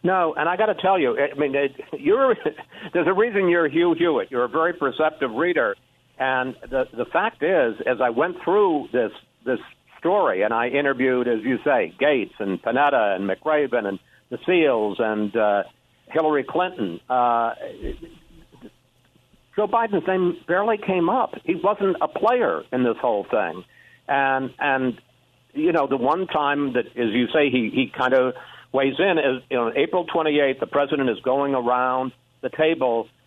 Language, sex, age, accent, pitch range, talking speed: English, male, 60-79, American, 120-155 Hz, 170 wpm